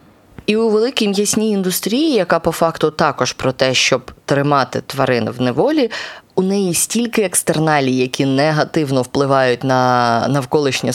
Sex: female